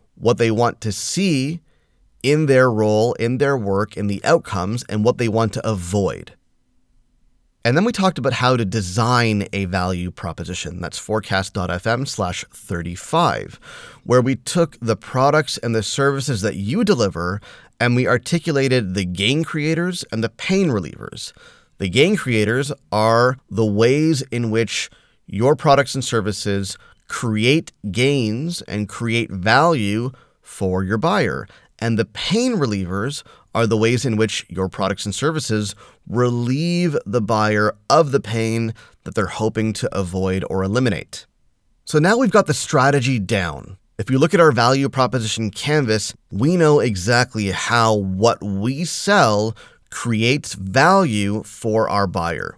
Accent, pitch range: American, 105-135 Hz